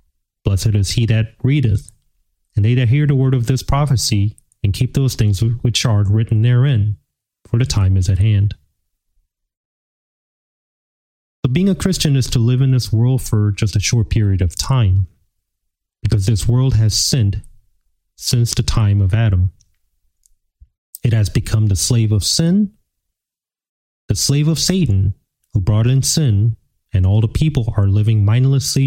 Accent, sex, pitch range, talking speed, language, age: American, male, 100-130 Hz, 160 wpm, English, 30-49